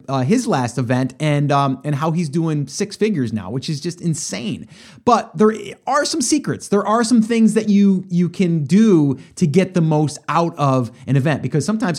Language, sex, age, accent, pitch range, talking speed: English, male, 30-49, American, 145-195 Hz, 205 wpm